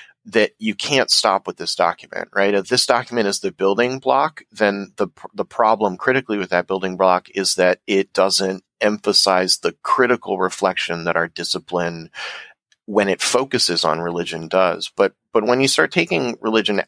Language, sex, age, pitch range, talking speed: English, male, 30-49, 85-105 Hz, 170 wpm